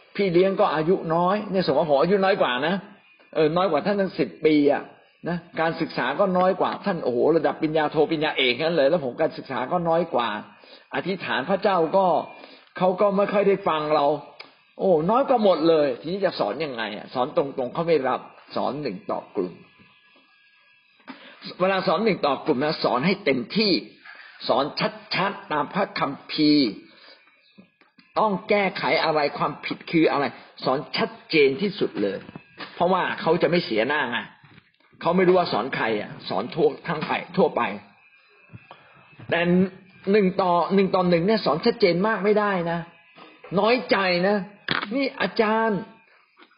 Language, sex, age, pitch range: Thai, male, 50-69, 165-215 Hz